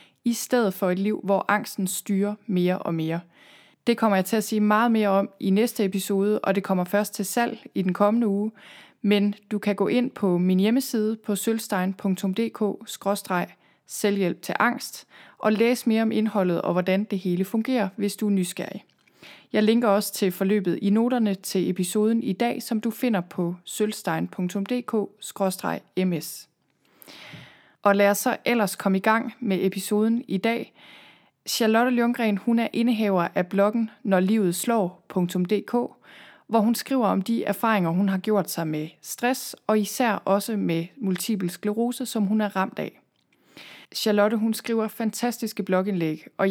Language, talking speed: Danish, 165 wpm